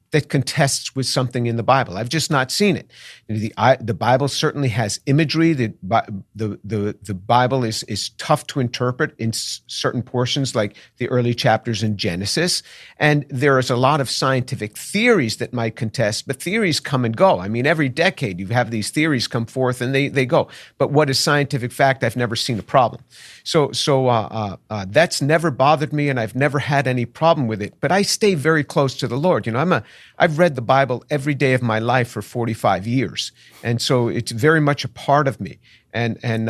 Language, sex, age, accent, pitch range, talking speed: English, male, 50-69, American, 120-160 Hz, 215 wpm